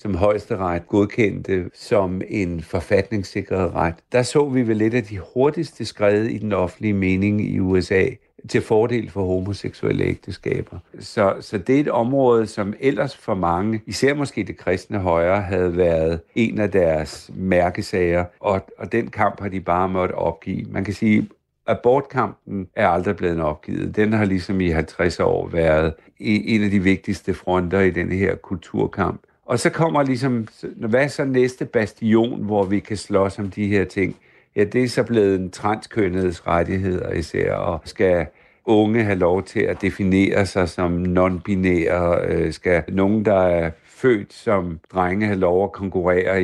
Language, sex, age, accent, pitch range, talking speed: Danish, male, 60-79, native, 90-110 Hz, 165 wpm